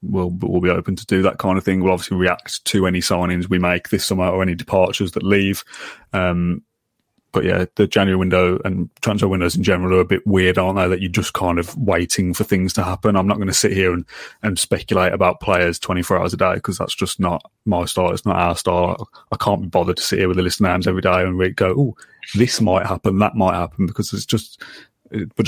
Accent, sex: British, male